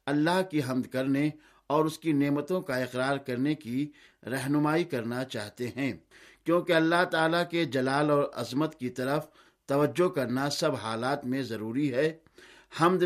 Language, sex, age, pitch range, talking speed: Urdu, male, 60-79, 130-160 Hz, 150 wpm